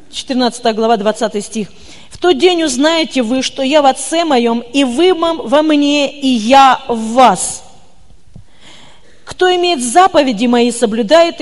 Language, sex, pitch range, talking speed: Russian, female, 255-335 Hz, 140 wpm